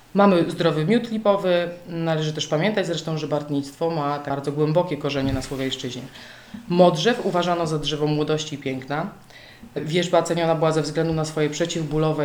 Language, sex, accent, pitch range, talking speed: Polish, female, native, 150-185 Hz, 150 wpm